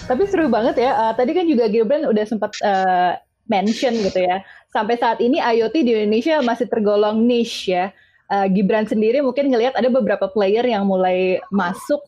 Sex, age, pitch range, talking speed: female, 20-39, 210-290 Hz, 180 wpm